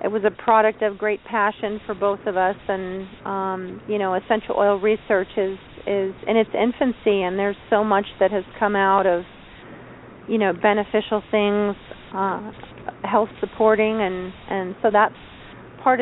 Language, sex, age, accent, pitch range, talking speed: English, female, 40-59, American, 195-220 Hz, 165 wpm